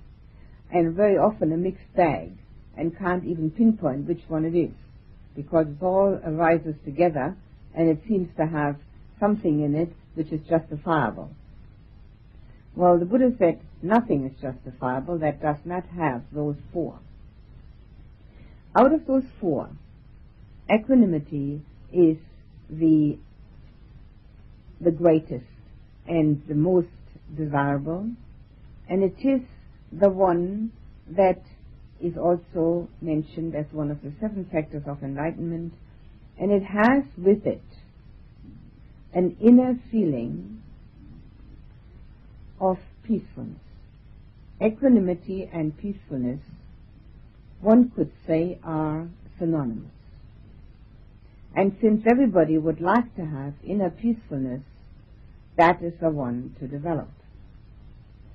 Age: 60-79